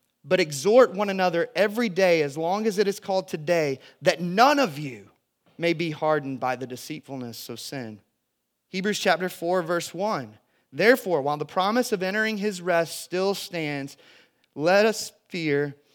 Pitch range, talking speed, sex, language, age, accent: 135-190 Hz, 160 wpm, male, English, 30-49, American